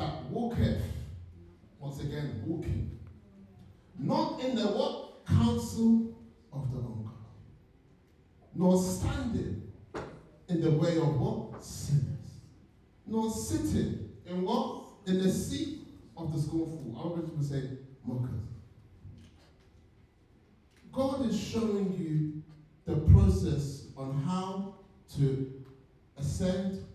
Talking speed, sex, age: 100 wpm, male, 40-59